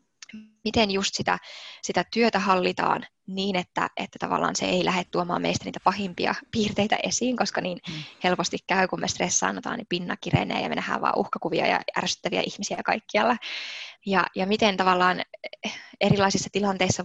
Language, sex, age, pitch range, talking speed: Finnish, female, 20-39, 180-205 Hz, 150 wpm